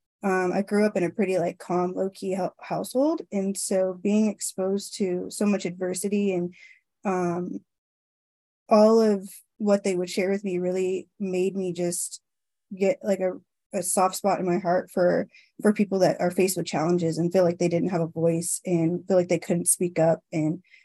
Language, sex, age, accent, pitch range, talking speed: English, female, 20-39, American, 180-210 Hz, 190 wpm